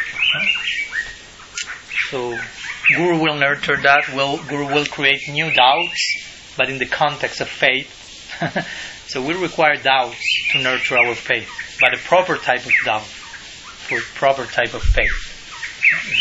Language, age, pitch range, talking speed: English, 30-49, 130-155 Hz, 135 wpm